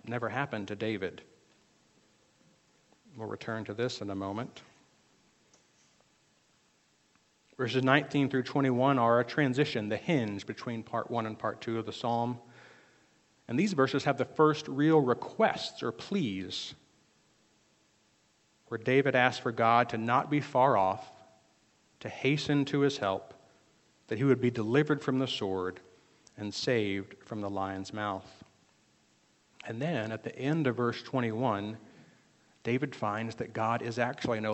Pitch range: 110-135 Hz